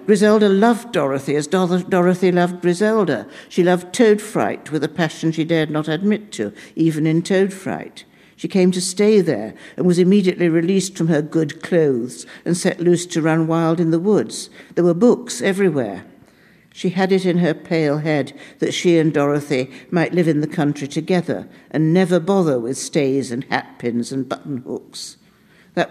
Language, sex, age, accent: English, female, 60-79, British